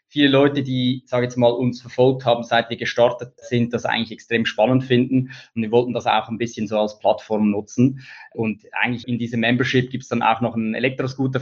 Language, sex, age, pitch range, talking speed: German, male, 20-39, 115-130 Hz, 220 wpm